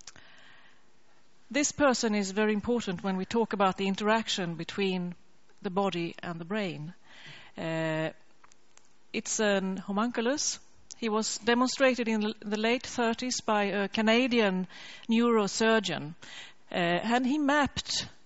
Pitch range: 190-235 Hz